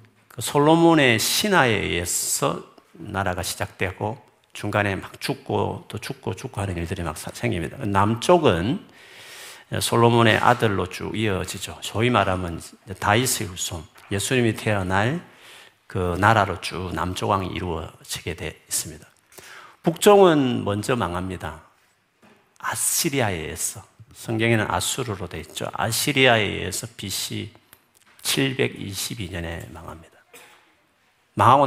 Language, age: Korean, 50-69